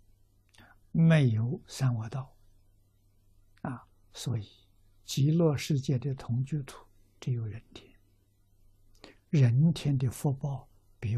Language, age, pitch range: Chinese, 60-79, 100-135 Hz